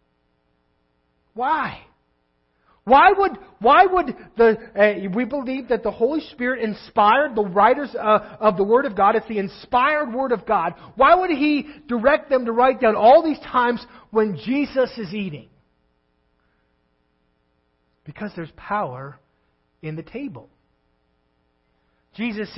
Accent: American